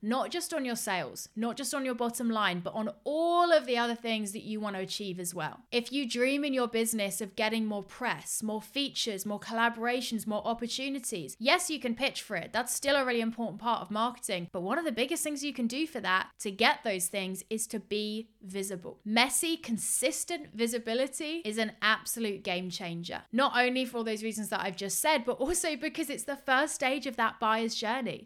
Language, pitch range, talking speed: English, 210-260 Hz, 215 wpm